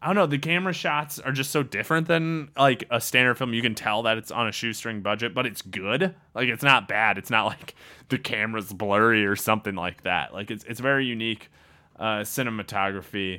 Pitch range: 100-140 Hz